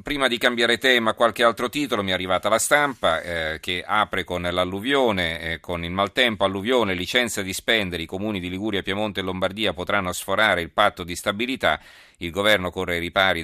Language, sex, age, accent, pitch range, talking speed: Italian, male, 40-59, native, 85-110 Hz, 190 wpm